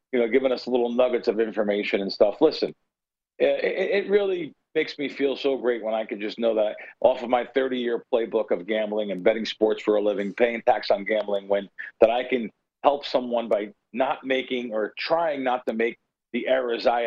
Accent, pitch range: American, 110-140 Hz